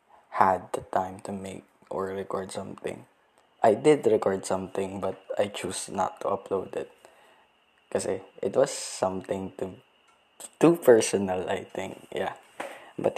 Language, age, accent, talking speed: Filipino, 20-39, native, 135 wpm